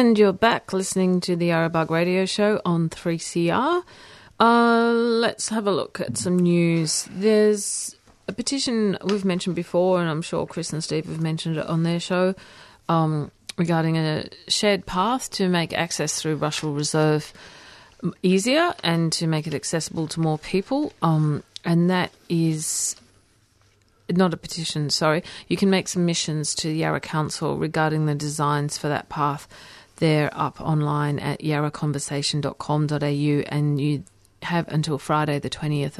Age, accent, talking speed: 40-59, Australian, 155 wpm